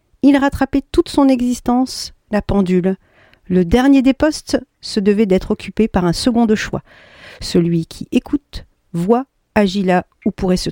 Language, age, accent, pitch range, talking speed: French, 50-69, French, 185-225 Hz, 160 wpm